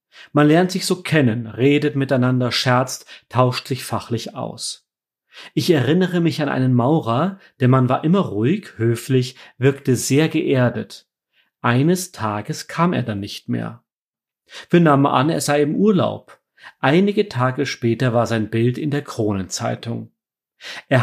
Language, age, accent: German, 40-59, German